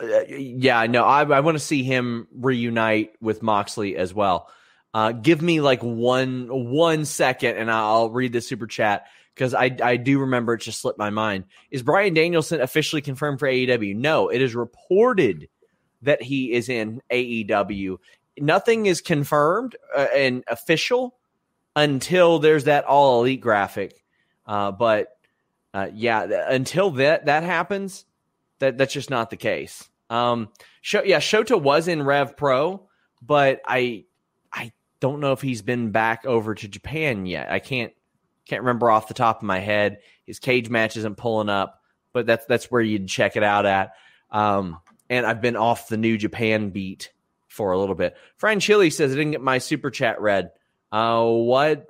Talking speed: 170 wpm